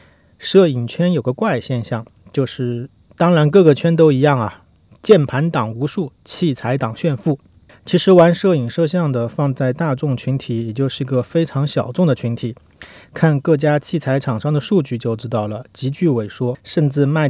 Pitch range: 120-155 Hz